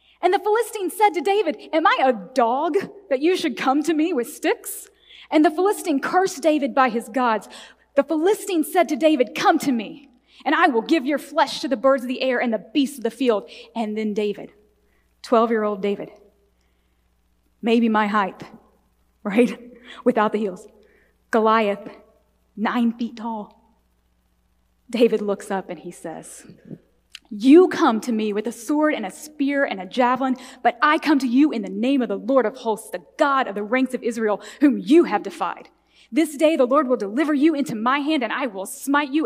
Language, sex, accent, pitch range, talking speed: English, female, American, 225-315 Hz, 195 wpm